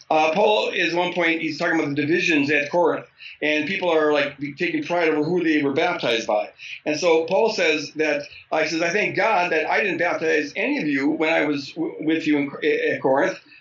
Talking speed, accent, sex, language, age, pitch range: 225 wpm, American, male, English, 50-69, 160-235 Hz